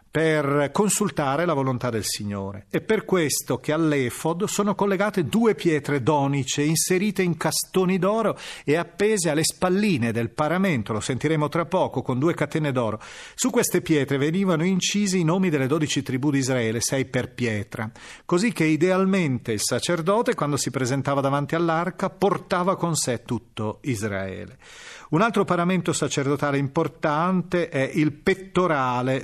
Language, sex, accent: Italian, male, native